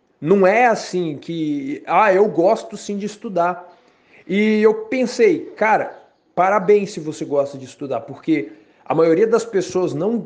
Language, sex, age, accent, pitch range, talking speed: Portuguese, male, 20-39, Brazilian, 150-210 Hz, 150 wpm